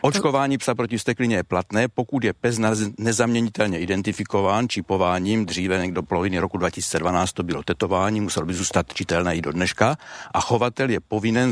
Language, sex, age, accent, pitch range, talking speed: Czech, male, 60-79, native, 95-115 Hz, 165 wpm